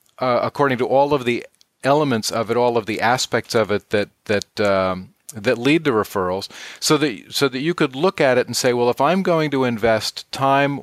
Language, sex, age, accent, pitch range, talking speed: English, male, 40-59, American, 110-125 Hz, 220 wpm